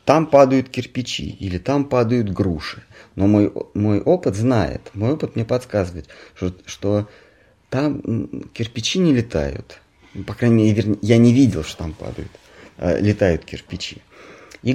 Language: Russian